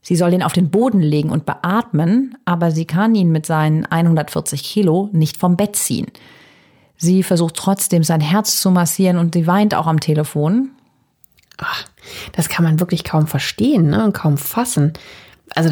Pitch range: 155-195 Hz